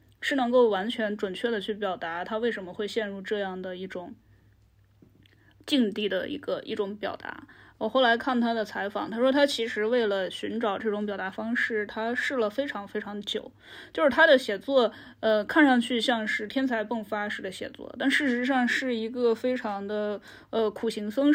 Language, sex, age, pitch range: Chinese, female, 10-29, 195-245 Hz